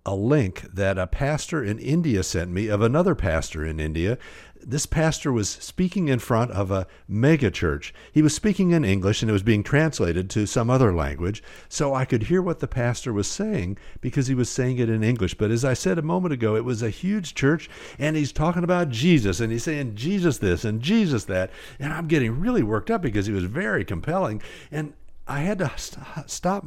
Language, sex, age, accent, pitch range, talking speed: English, male, 60-79, American, 105-170 Hz, 215 wpm